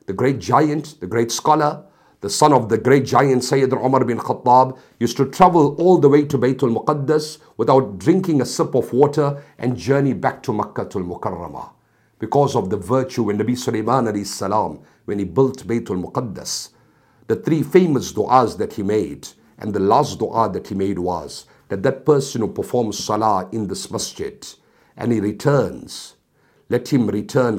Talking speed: 175 wpm